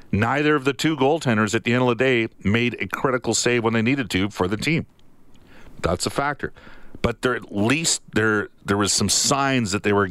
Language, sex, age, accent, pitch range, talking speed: English, male, 50-69, American, 100-125 Hz, 210 wpm